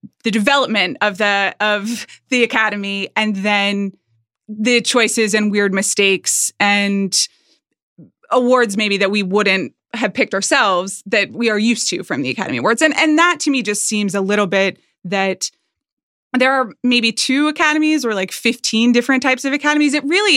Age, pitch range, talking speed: 20-39, 200-250 Hz, 170 wpm